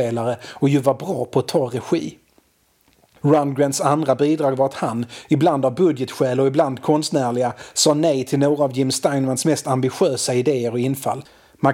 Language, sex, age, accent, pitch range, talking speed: Swedish, male, 30-49, native, 140-170 Hz, 170 wpm